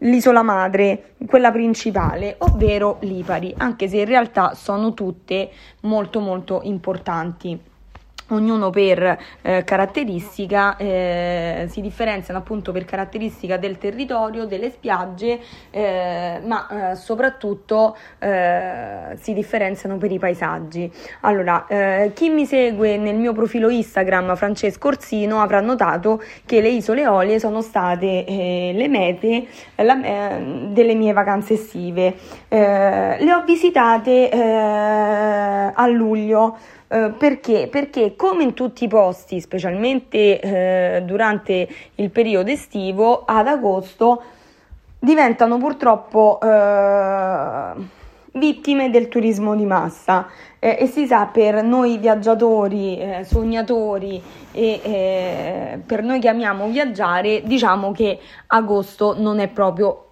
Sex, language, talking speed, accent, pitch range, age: female, Italian, 120 wpm, native, 190-230 Hz, 20-39